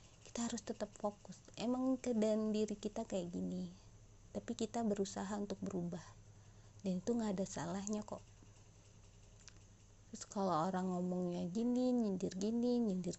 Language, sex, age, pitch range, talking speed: Indonesian, female, 30-49, 145-225 Hz, 125 wpm